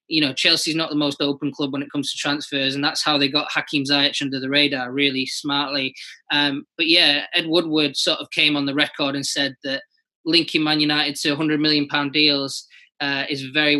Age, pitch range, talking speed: 20-39, 145-175 Hz, 220 wpm